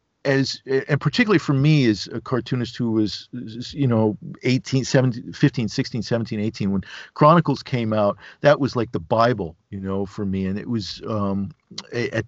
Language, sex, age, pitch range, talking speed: English, male, 50-69, 110-155 Hz, 175 wpm